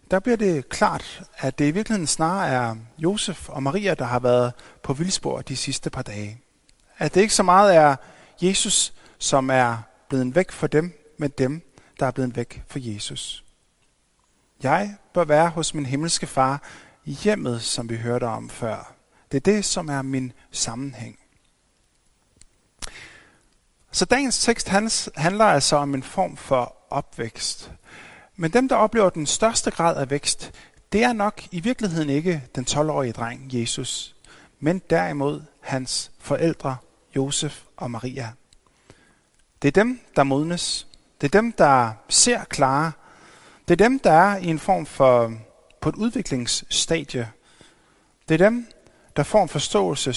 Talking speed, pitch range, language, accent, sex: 155 wpm, 130-185 Hz, Danish, native, male